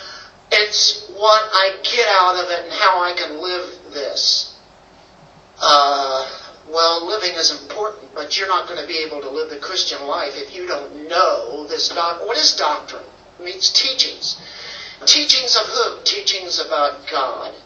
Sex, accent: male, American